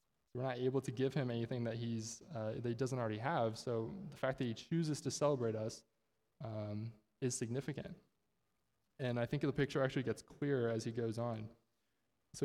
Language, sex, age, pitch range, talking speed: English, male, 20-39, 115-140 Hz, 195 wpm